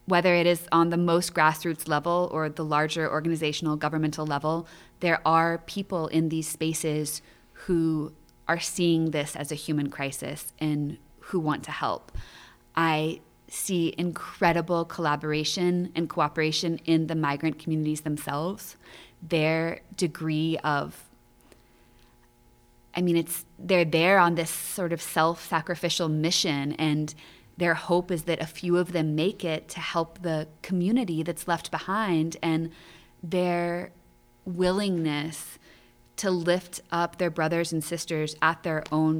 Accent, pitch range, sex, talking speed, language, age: American, 150-170 Hz, female, 135 wpm, English, 20-39